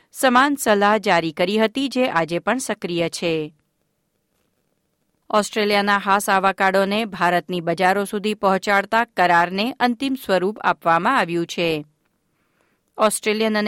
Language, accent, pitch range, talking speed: Gujarati, native, 180-225 Hz, 85 wpm